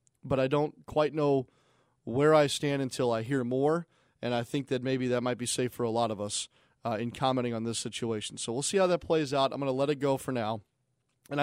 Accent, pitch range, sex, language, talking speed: American, 120-145 Hz, male, English, 250 wpm